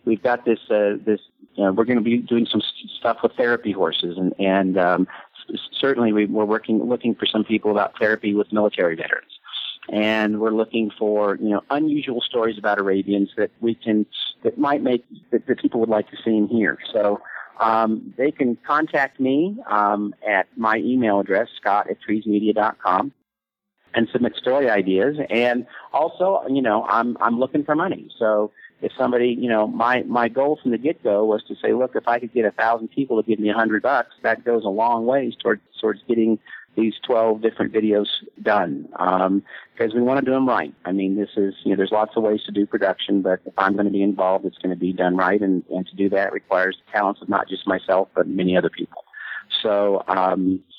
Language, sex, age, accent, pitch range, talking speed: English, male, 40-59, American, 100-120 Hz, 215 wpm